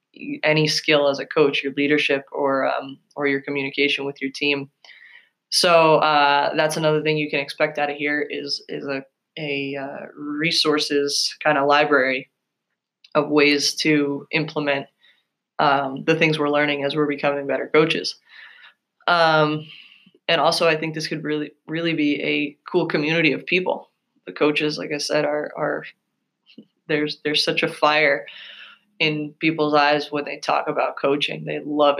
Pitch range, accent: 140-155 Hz, American